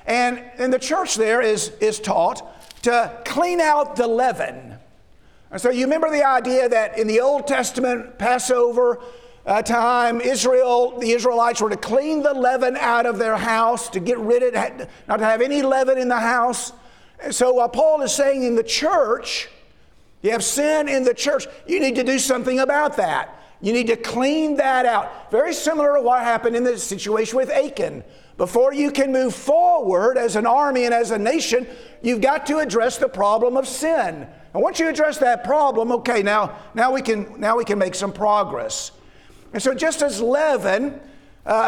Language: English